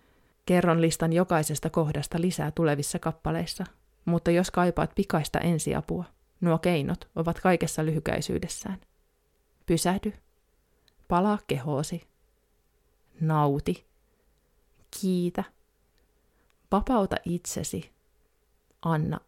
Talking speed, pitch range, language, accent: 80 wpm, 150-185 Hz, Finnish, native